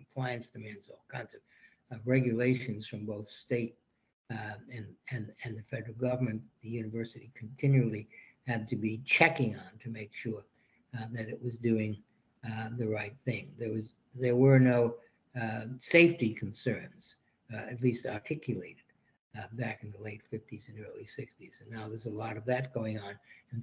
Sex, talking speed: male, 175 wpm